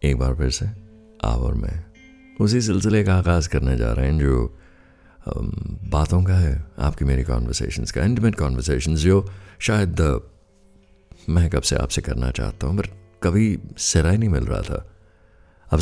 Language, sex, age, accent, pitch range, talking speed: Hindi, male, 50-69, native, 70-95 Hz, 160 wpm